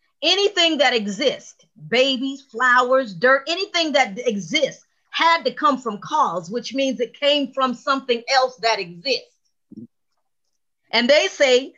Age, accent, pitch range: 40-59, American, 245-320 Hz